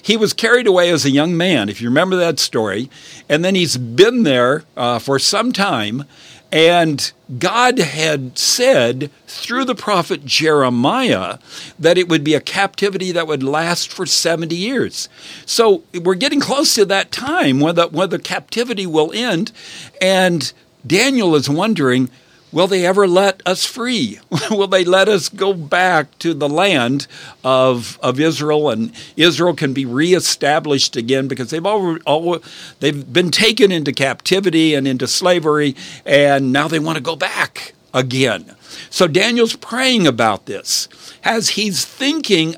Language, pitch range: English, 145-195 Hz